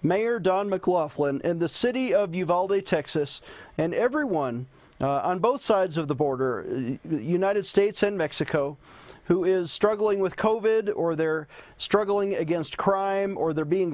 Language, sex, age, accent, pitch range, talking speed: English, male, 40-59, American, 145-185 Hz, 150 wpm